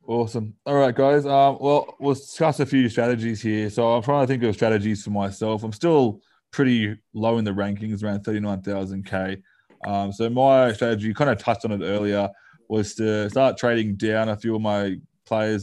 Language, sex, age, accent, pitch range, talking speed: English, male, 20-39, Australian, 100-115 Hz, 195 wpm